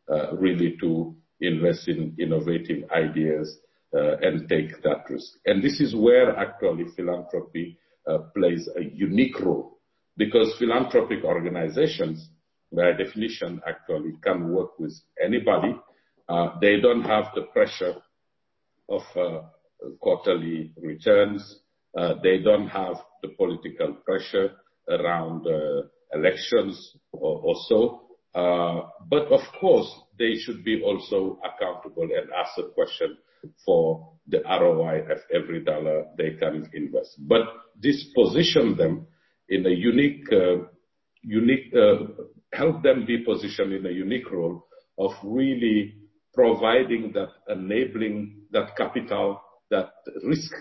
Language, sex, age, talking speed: English, male, 50-69, 125 wpm